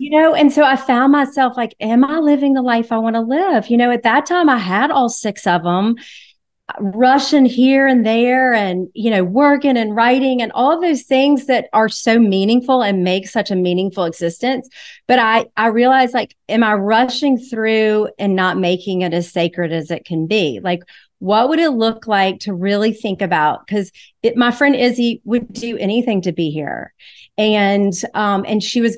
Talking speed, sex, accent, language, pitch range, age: 200 wpm, female, American, English, 190-250 Hz, 40-59